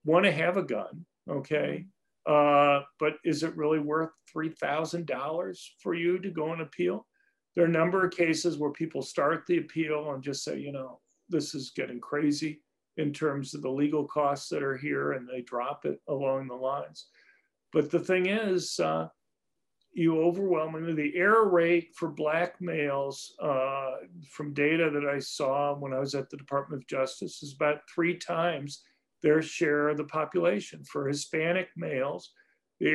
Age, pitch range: 50-69, 145-170 Hz